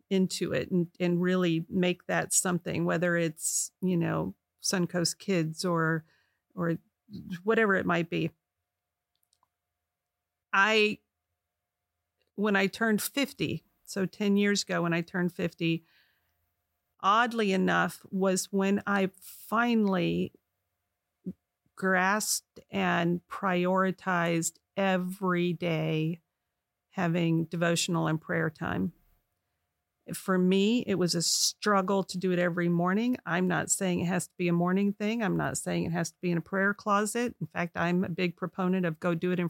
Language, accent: English, American